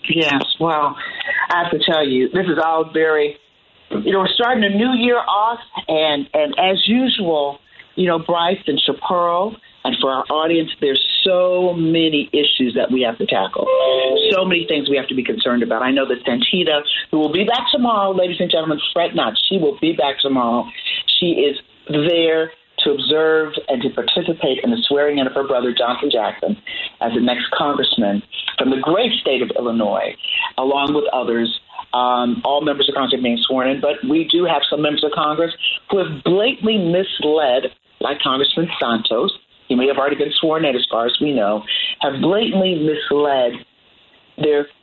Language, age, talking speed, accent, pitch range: English, 40-59, 185 wpm, American, 140-185 Hz